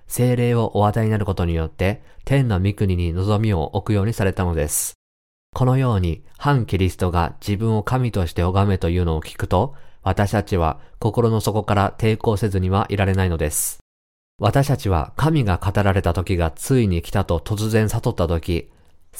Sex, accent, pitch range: male, native, 85-115 Hz